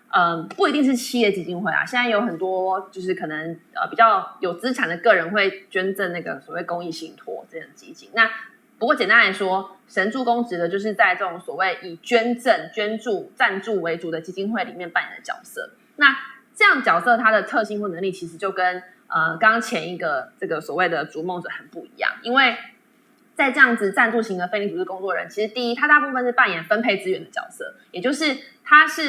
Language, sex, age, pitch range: Chinese, female, 20-39, 190-265 Hz